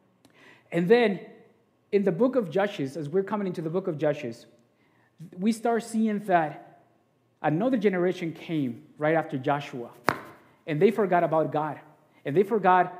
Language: English